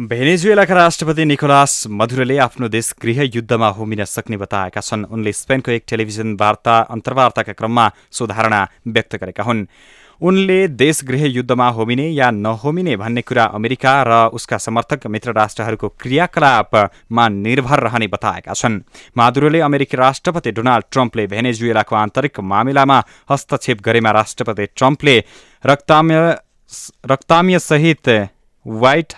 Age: 20-39